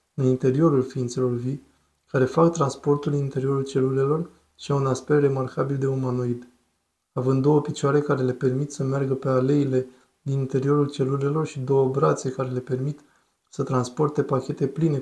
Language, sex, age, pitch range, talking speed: Romanian, male, 20-39, 130-145 Hz, 155 wpm